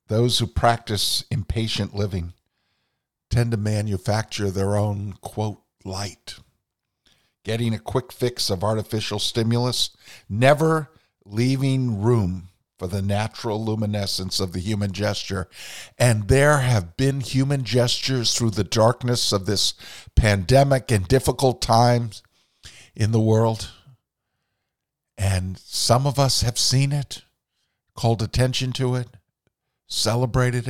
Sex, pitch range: male, 105-130 Hz